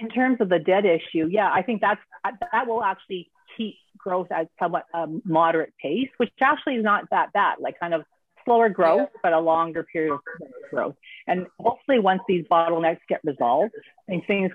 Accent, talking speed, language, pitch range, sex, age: American, 200 wpm, English, 160-220 Hz, female, 40-59